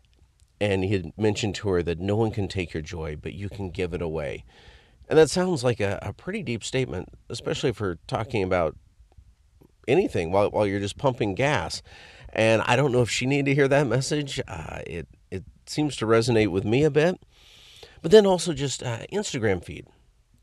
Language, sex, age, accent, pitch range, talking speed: English, male, 40-59, American, 90-120 Hz, 195 wpm